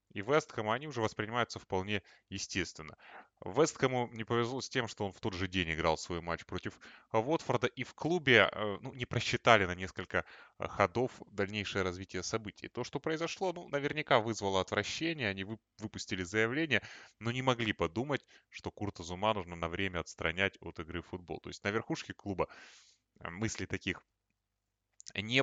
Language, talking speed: Russian, 160 wpm